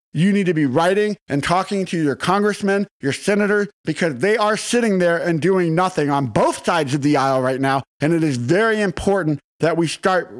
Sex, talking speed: male, 210 wpm